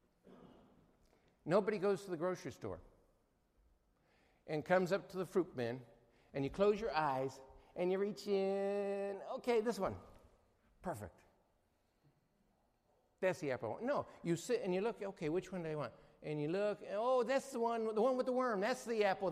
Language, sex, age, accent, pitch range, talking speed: English, male, 60-79, American, 145-200 Hz, 175 wpm